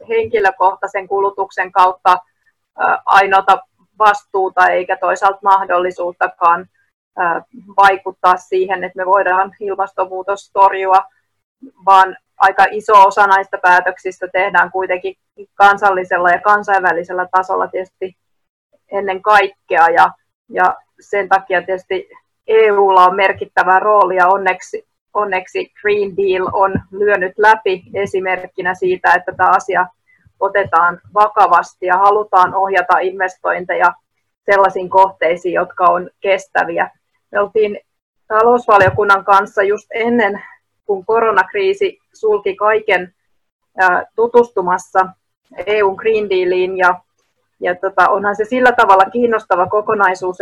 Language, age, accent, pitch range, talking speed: Finnish, 30-49, native, 185-210 Hz, 100 wpm